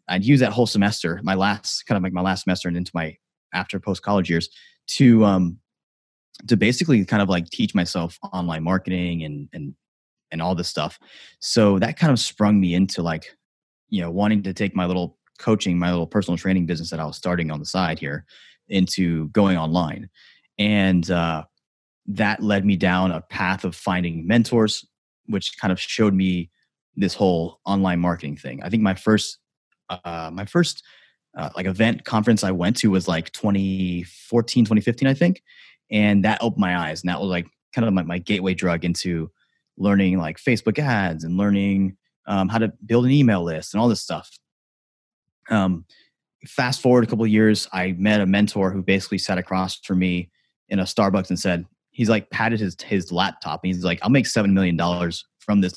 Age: 20-39